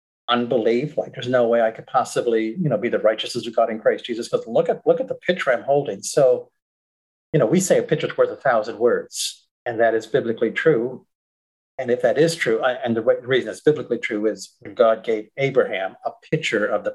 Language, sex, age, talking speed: English, male, 40-59, 220 wpm